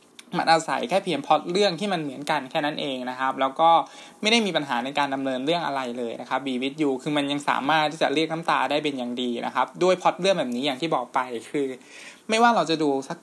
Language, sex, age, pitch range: Thai, male, 20-39, 135-180 Hz